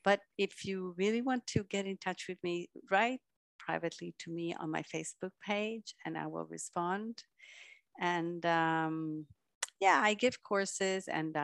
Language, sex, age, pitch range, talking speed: English, female, 50-69, 155-205 Hz, 155 wpm